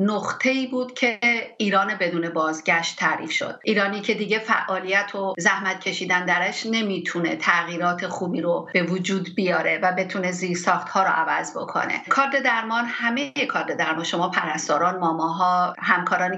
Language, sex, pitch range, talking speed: English, female, 180-210 Hz, 145 wpm